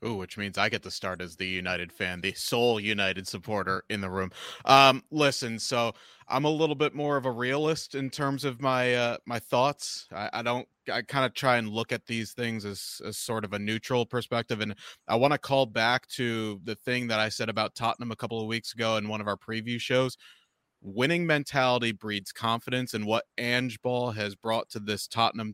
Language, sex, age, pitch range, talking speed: English, male, 30-49, 105-125 Hz, 220 wpm